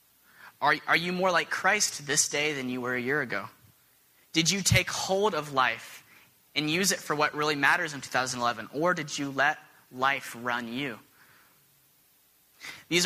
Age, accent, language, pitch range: 20-39, American, English, 125-170 Hz